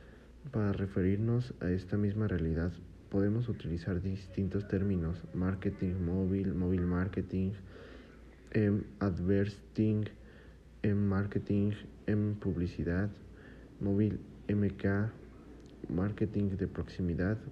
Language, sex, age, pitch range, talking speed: Spanish, male, 50-69, 90-105 Hz, 95 wpm